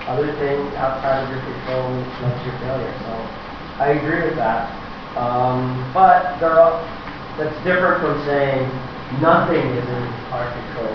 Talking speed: 145 wpm